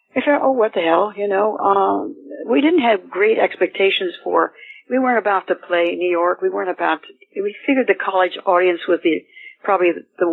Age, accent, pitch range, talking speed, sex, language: 60-79, American, 180-285 Hz, 200 wpm, female, English